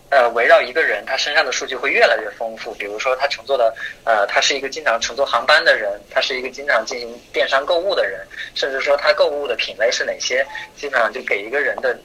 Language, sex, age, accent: Chinese, male, 20-39, native